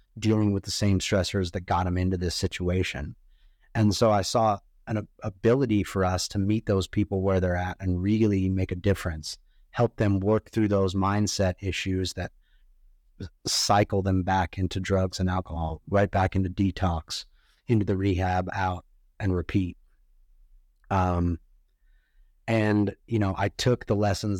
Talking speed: 155 wpm